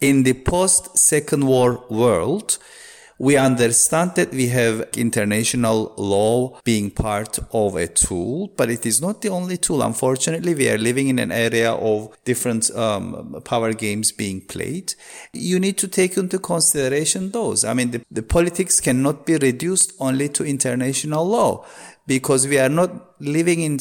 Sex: male